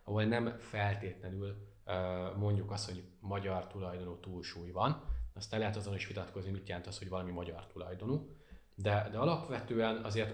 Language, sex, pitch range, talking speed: Hungarian, male, 95-110 Hz, 150 wpm